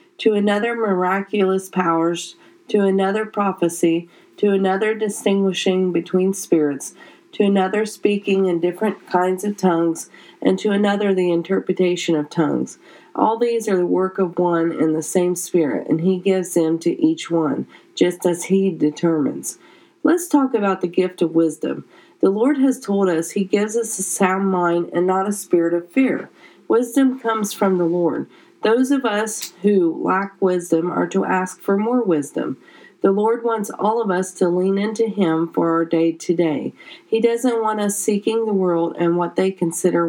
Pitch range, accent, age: 170-210 Hz, American, 40-59